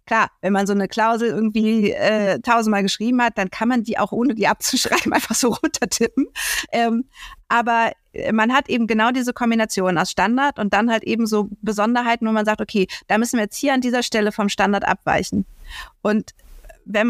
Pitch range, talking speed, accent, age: 200-235 Hz, 195 wpm, German, 50-69